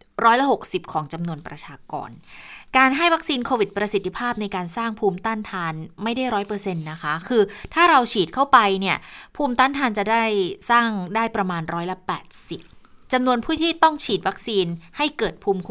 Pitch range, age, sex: 180-245 Hz, 20-39, female